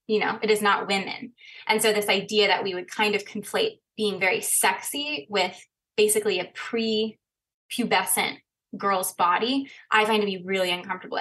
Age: 20-39